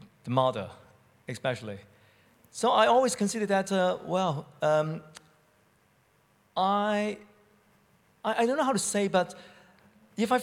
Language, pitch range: English, 130-175 Hz